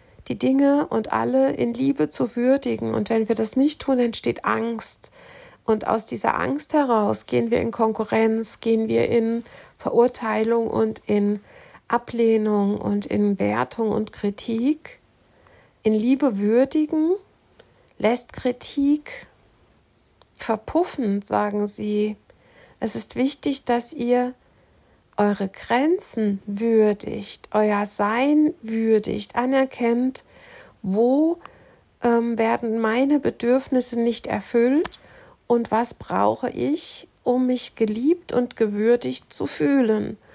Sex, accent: female, German